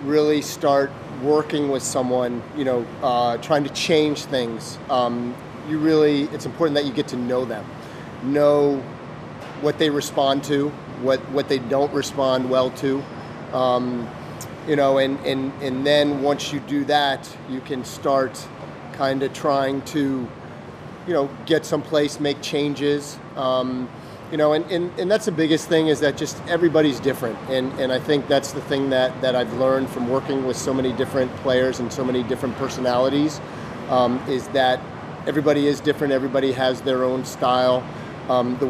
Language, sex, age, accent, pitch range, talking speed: English, male, 30-49, American, 130-145 Hz, 170 wpm